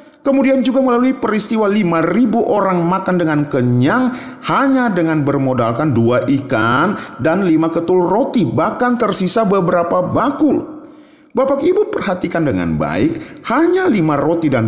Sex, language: male, Indonesian